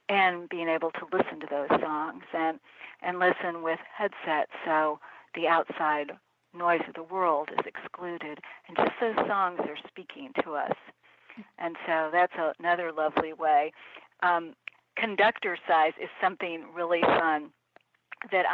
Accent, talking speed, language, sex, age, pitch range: American, 140 wpm, English, female, 60-79, 165-200 Hz